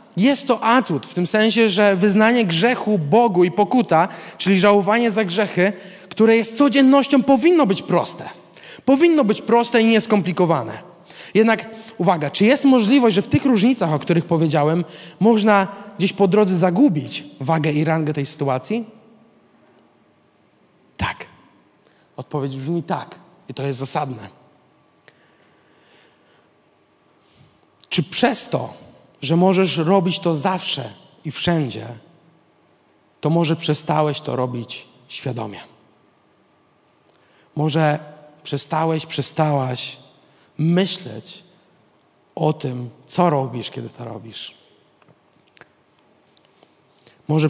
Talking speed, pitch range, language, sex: 105 wpm, 150-210 Hz, Polish, male